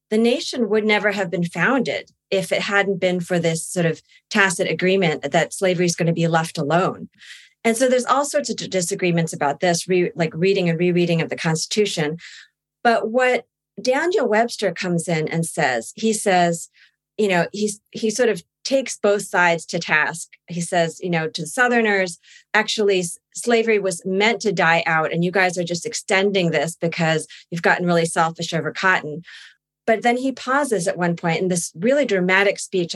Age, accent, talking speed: 40-59, American, 185 wpm